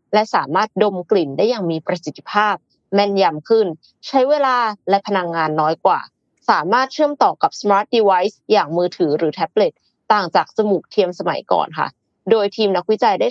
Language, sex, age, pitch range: Thai, female, 20-39, 175-230 Hz